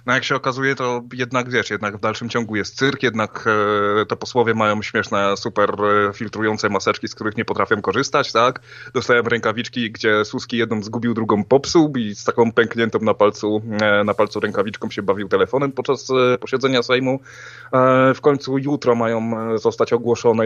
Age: 20-39